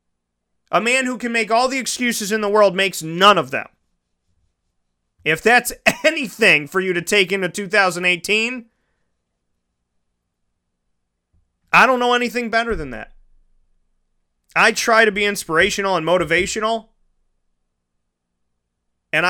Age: 30-49